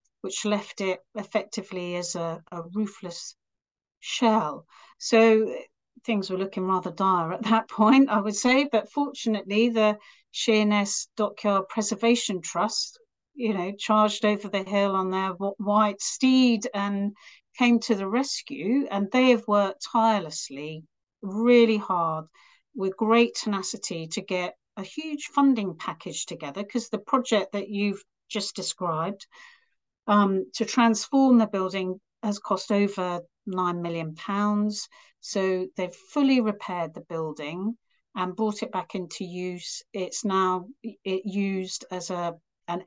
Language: English